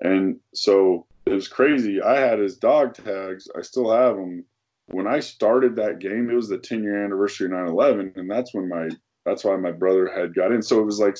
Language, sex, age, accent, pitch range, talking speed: English, male, 20-39, American, 85-115 Hz, 225 wpm